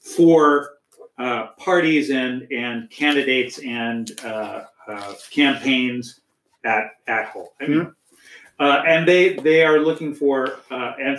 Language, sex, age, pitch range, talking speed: English, male, 40-59, 125-150 Hz, 130 wpm